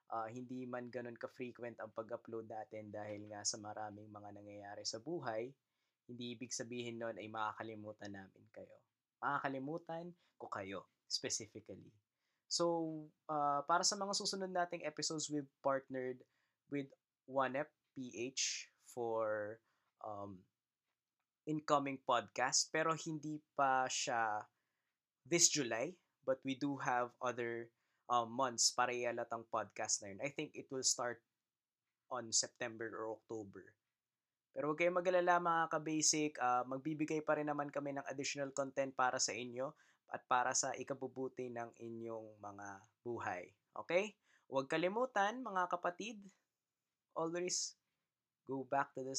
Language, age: Filipino, 20-39